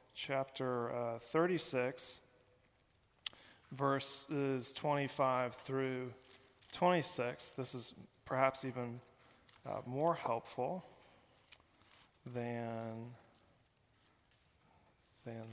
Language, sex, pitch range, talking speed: English, male, 125-140 Hz, 60 wpm